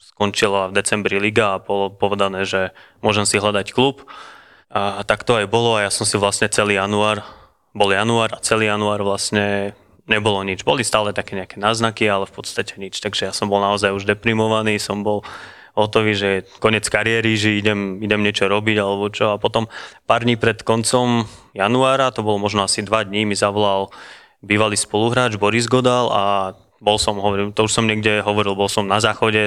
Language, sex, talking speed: Slovak, male, 190 wpm